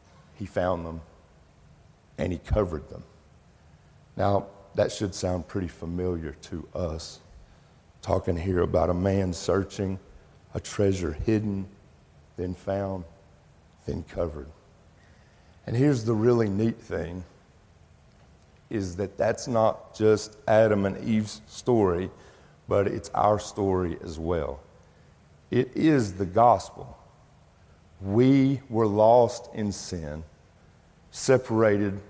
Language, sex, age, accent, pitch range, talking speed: English, male, 50-69, American, 85-115 Hz, 110 wpm